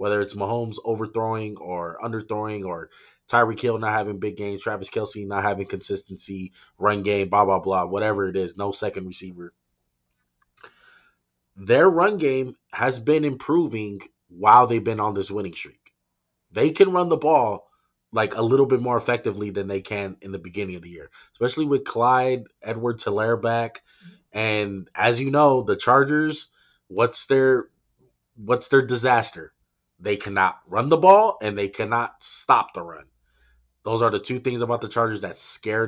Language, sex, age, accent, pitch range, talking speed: English, male, 20-39, American, 95-120 Hz, 165 wpm